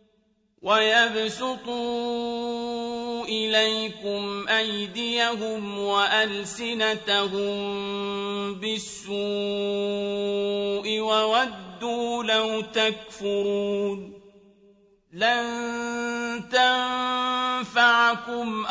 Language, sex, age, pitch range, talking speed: Arabic, male, 40-59, 205-235 Hz, 30 wpm